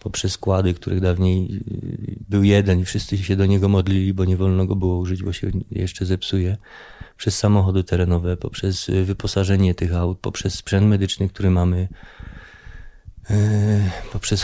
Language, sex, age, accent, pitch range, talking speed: Polish, male, 30-49, native, 95-105 Hz, 145 wpm